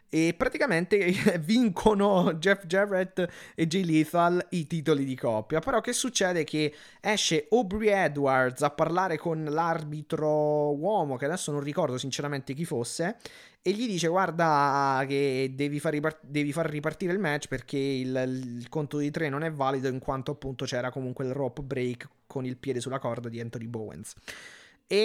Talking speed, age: 170 wpm, 20-39